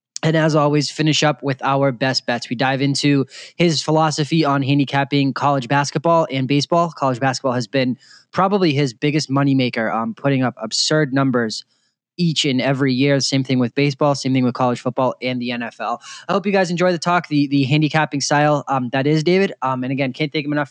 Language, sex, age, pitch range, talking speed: English, male, 20-39, 130-160 Hz, 205 wpm